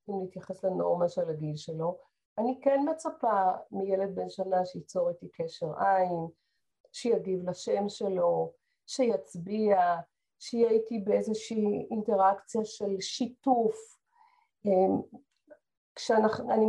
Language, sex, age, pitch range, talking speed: Hebrew, female, 40-59, 185-250 Hz, 95 wpm